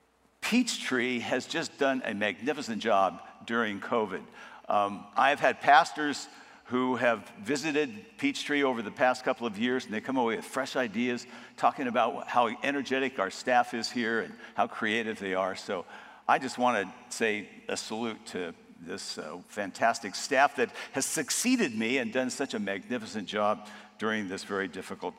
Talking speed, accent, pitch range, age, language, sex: 165 wpm, American, 120-165 Hz, 60-79, English, male